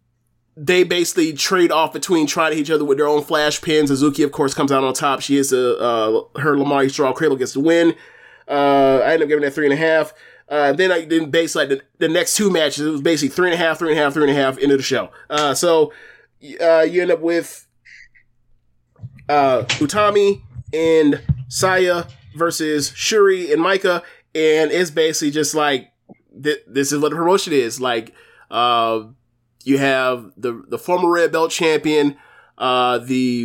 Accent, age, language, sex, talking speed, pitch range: American, 20-39, English, male, 200 wpm, 130-160 Hz